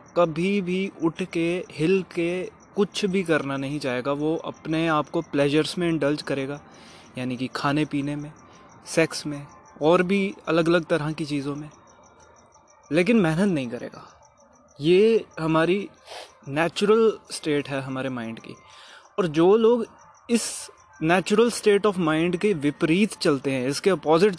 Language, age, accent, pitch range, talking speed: Hindi, 20-39, native, 145-195 Hz, 150 wpm